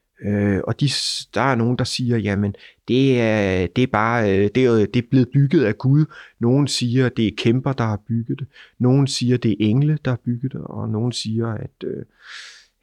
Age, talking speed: 30-49, 215 wpm